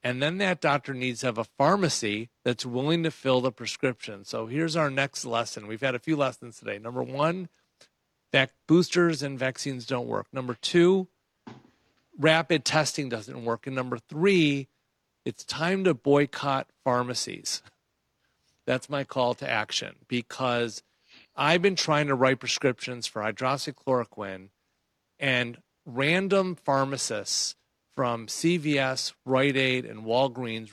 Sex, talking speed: male, 135 wpm